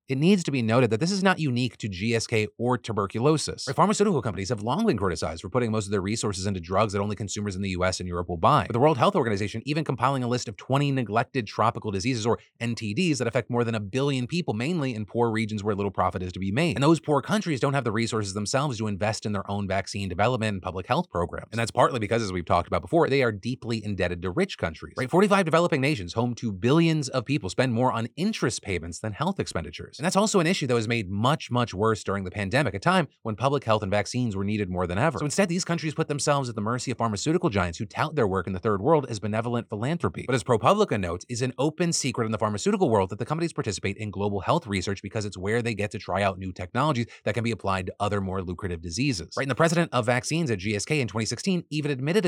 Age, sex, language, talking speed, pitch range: 30-49, male, English, 260 wpm, 105-145 Hz